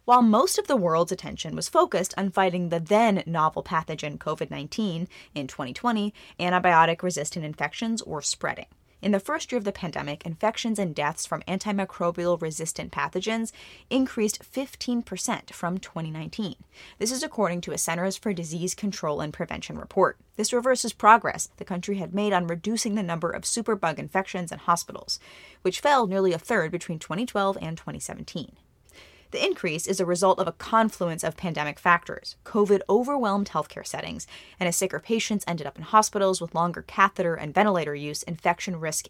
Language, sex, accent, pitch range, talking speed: English, female, American, 170-215 Hz, 165 wpm